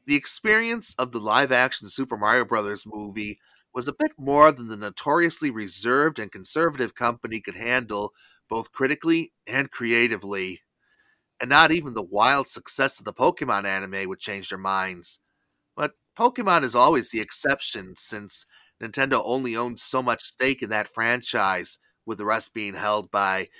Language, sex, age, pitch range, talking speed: English, male, 30-49, 105-140 Hz, 160 wpm